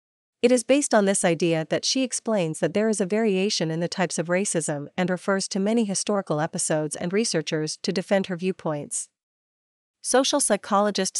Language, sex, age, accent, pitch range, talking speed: German, female, 40-59, American, 165-210 Hz, 175 wpm